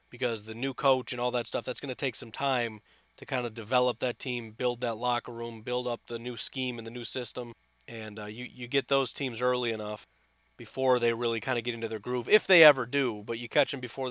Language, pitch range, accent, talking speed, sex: English, 120-145 Hz, American, 255 wpm, male